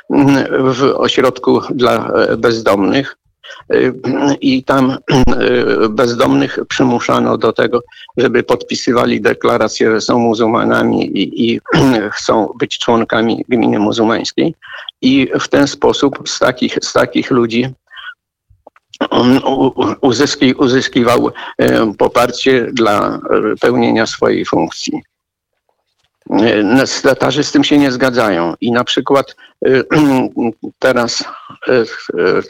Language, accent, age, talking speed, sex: Polish, native, 50-69, 90 wpm, male